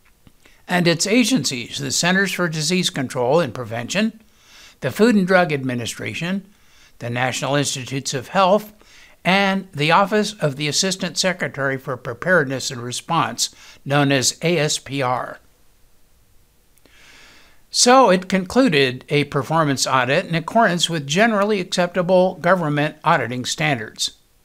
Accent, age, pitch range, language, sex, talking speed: American, 60-79, 140-190 Hz, English, male, 120 wpm